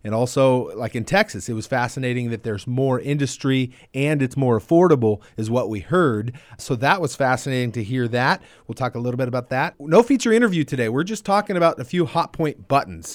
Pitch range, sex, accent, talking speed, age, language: 115-145 Hz, male, American, 215 wpm, 30-49, English